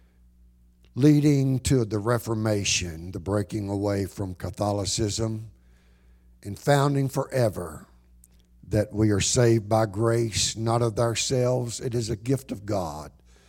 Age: 60-79